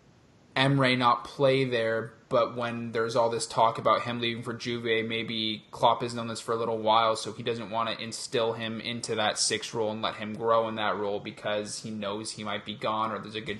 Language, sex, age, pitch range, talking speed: English, male, 20-39, 110-120 Hz, 235 wpm